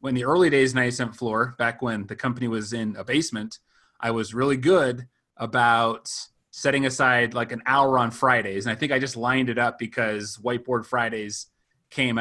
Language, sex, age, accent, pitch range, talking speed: English, male, 30-49, American, 115-135 Hz, 185 wpm